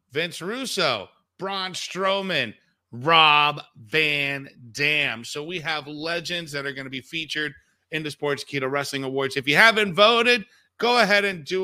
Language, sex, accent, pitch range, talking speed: English, male, American, 130-165 Hz, 160 wpm